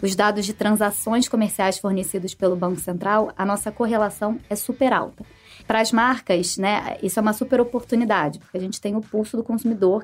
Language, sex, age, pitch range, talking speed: Portuguese, female, 20-39, 195-230 Hz, 185 wpm